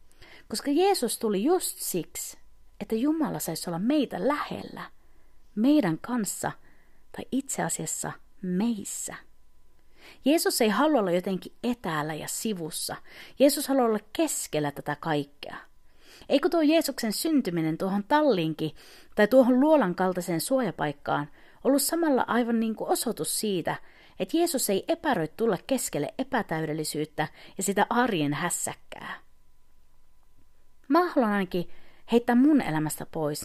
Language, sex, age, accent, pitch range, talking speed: Finnish, female, 40-59, native, 170-275 Hz, 120 wpm